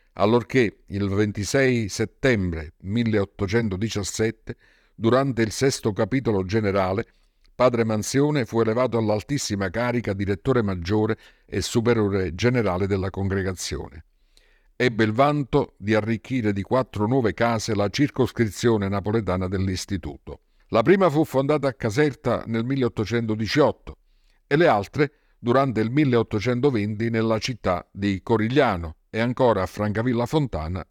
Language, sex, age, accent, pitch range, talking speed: Italian, male, 50-69, native, 95-120 Hz, 115 wpm